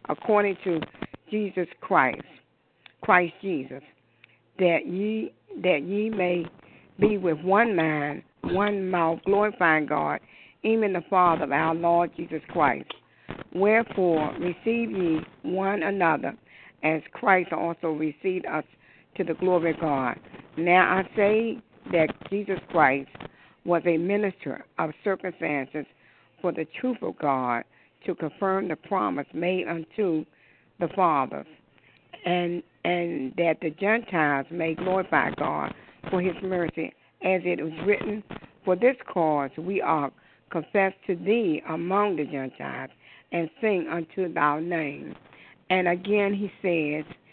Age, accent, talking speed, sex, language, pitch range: 60-79, American, 130 wpm, female, English, 160-190 Hz